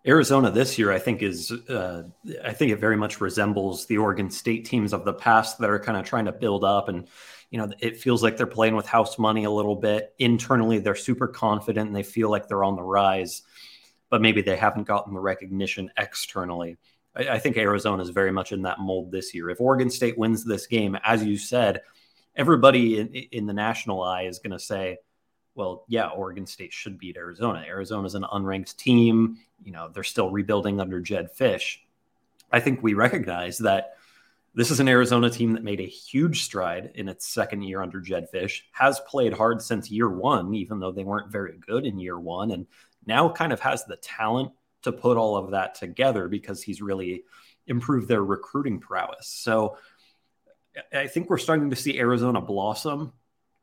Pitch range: 95-115 Hz